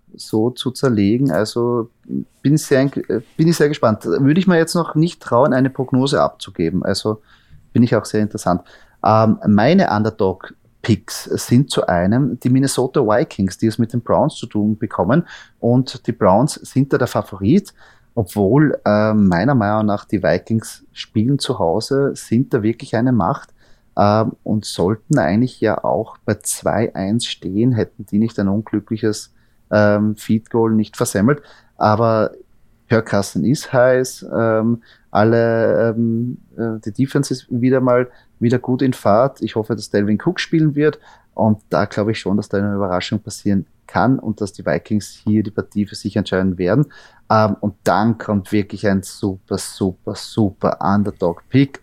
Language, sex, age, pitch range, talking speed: German, male, 30-49, 105-125 Hz, 155 wpm